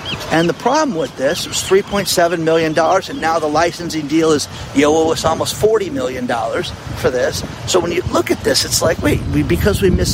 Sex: male